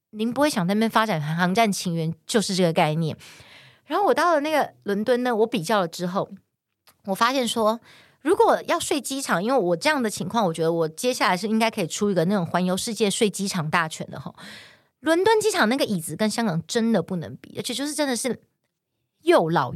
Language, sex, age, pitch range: Chinese, female, 30-49, 190-295 Hz